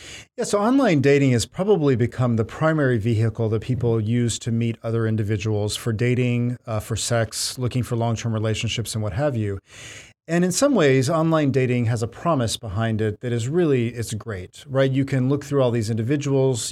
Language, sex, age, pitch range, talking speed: English, male, 40-59, 110-140 Hz, 195 wpm